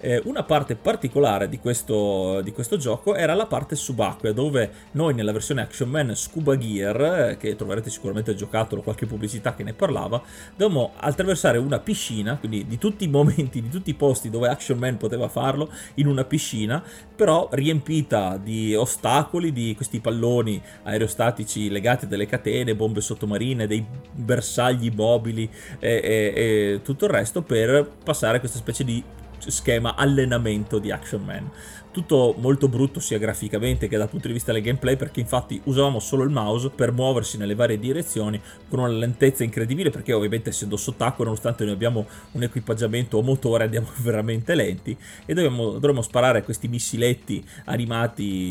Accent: native